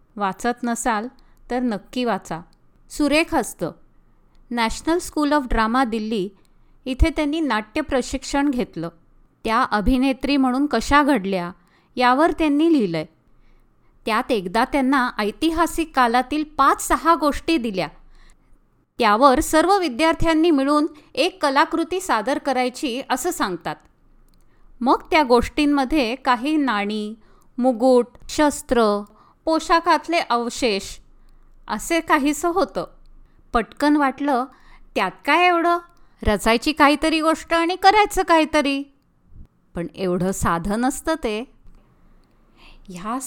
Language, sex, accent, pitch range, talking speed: Marathi, female, native, 225-305 Hz, 100 wpm